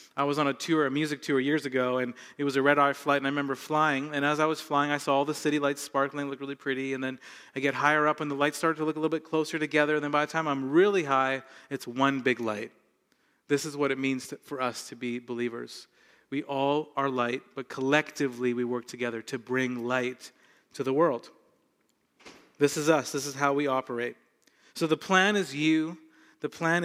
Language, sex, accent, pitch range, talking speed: English, male, American, 130-155 Hz, 235 wpm